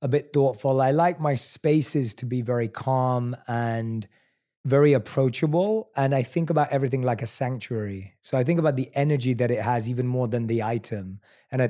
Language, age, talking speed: English, 20-39, 195 wpm